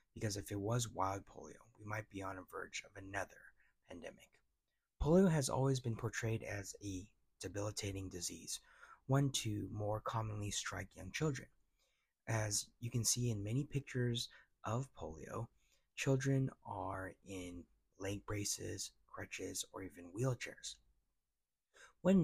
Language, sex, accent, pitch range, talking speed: English, male, American, 95-125 Hz, 135 wpm